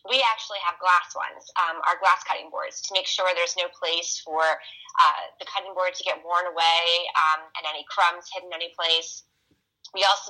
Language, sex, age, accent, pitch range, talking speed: English, female, 20-39, American, 165-195 Hz, 200 wpm